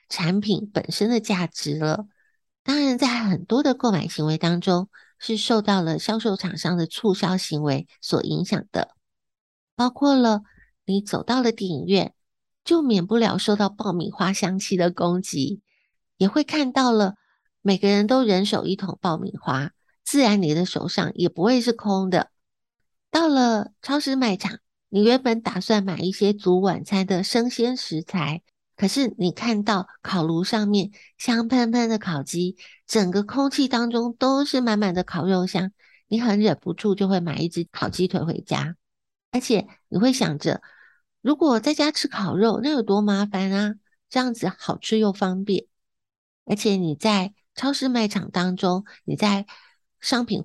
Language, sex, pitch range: Chinese, female, 180-230 Hz